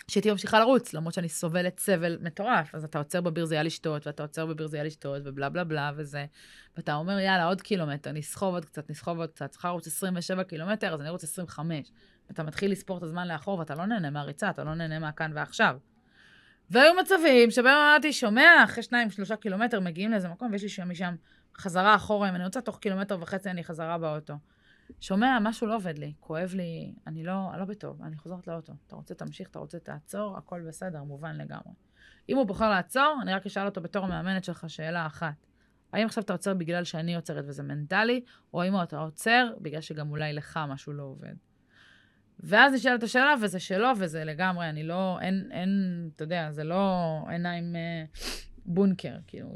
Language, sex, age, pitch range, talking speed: Hebrew, female, 30-49, 160-200 Hz, 180 wpm